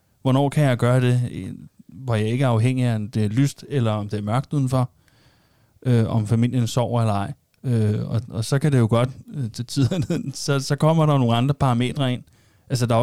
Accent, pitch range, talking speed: native, 110-135 Hz, 220 wpm